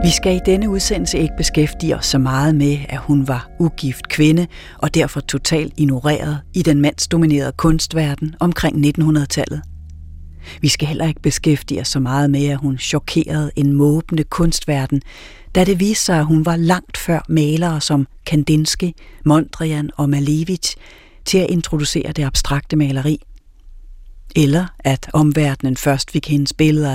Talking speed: 155 wpm